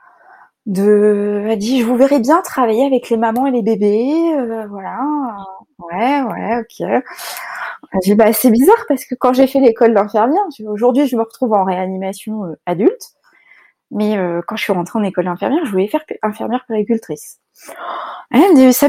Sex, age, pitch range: female, 20-39, 200-255 Hz